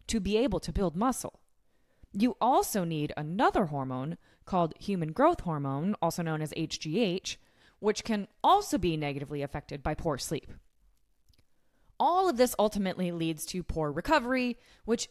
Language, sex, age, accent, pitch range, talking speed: English, female, 20-39, American, 170-235 Hz, 145 wpm